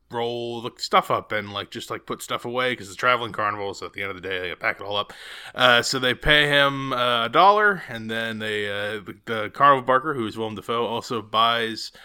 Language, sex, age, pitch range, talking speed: English, male, 20-39, 115-140 Hz, 245 wpm